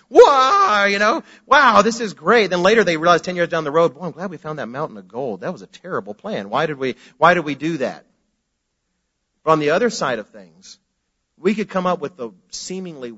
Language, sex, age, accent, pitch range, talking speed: English, male, 40-59, American, 145-190 Hz, 235 wpm